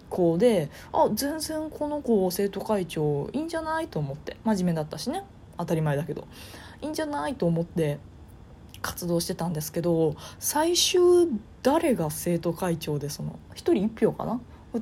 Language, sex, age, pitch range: Japanese, female, 20-39, 160-255 Hz